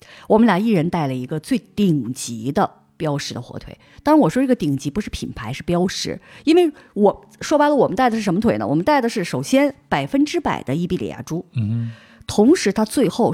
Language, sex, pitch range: Chinese, female, 150-245 Hz